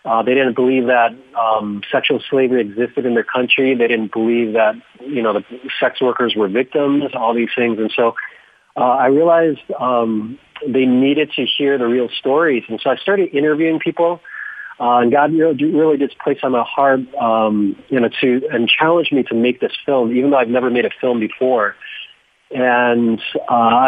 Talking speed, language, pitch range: 190 wpm, English, 120-150 Hz